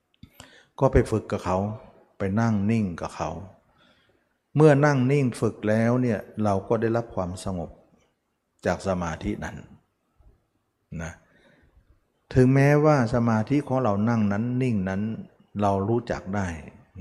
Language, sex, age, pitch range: Thai, male, 60-79, 95-120 Hz